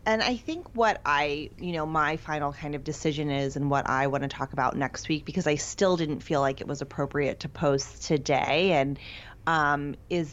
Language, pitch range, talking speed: English, 140-165 Hz, 215 wpm